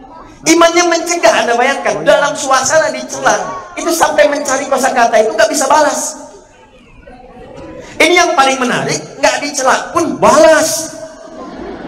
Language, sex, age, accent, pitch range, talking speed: Indonesian, male, 40-59, native, 205-285 Hz, 115 wpm